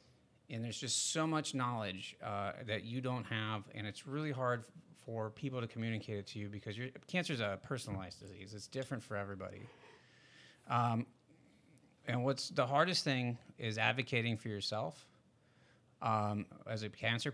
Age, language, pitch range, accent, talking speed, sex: 30-49, English, 105-130 Hz, American, 165 wpm, male